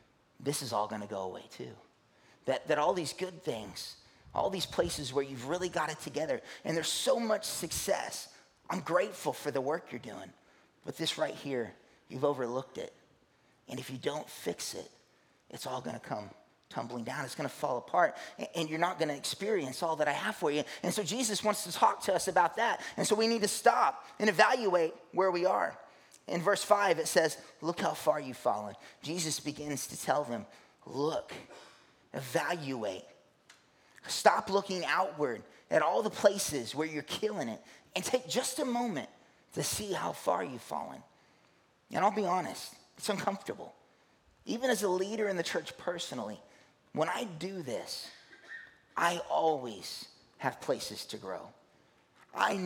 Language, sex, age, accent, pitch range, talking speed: English, male, 30-49, American, 150-210 Hz, 180 wpm